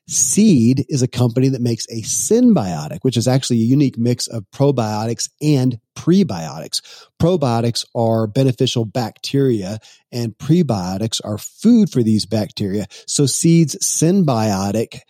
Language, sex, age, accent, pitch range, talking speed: English, male, 40-59, American, 110-135 Hz, 125 wpm